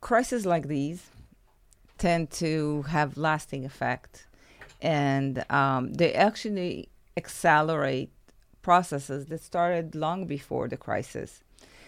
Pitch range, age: 140-175 Hz, 40-59